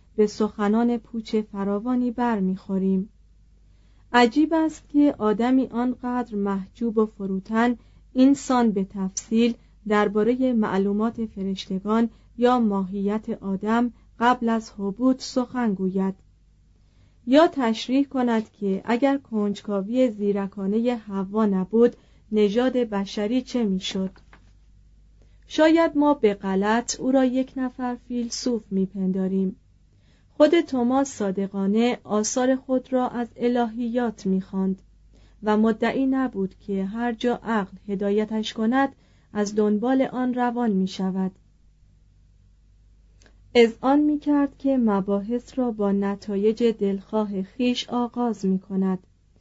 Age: 30-49